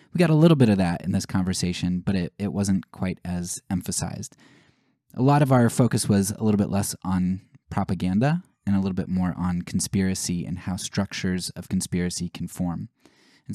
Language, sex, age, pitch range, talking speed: English, male, 20-39, 90-110 Hz, 195 wpm